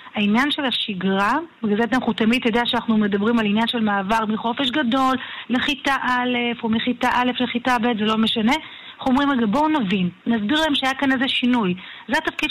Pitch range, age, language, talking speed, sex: 220-275 Hz, 30-49, Hebrew, 185 wpm, female